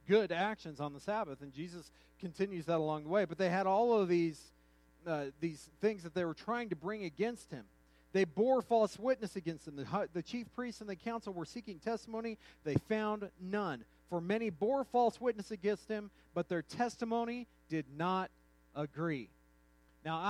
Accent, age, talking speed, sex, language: American, 40-59, 185 wpm, male, English